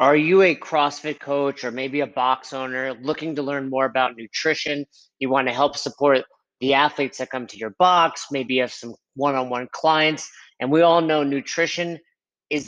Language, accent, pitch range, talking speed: English, American, 130-170 Hz, 190 wpm